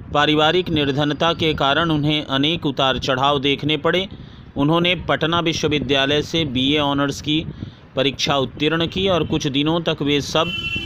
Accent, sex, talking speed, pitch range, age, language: native, male, 145 wpm, 140-170 Hz, 40-59, Hindi